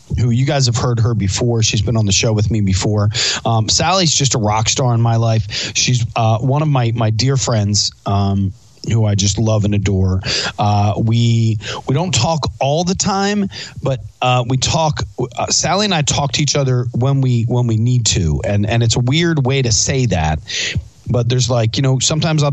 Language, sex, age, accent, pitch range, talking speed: English, male, 30-49, American, 110-135 Hz, 215 wpm